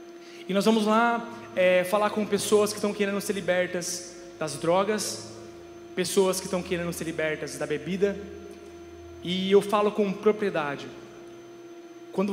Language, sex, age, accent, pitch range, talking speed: Portuguese, male, 20-39, Brazilian, 170-215 Hz, 135 wpm